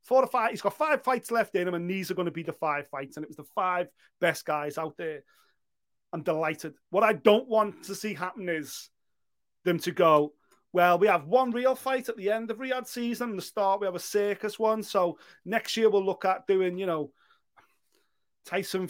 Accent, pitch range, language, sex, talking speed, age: British, 170-215 Hz, English, male, 225 wpm, 30-49